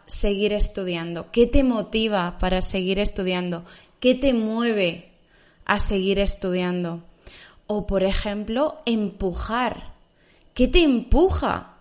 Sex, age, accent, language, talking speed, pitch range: female, 20-39, Spanish, Spanish, 105 wpm, 190-225 Hz